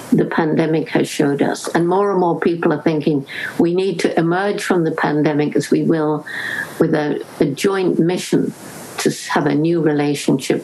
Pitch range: 155-180 Hz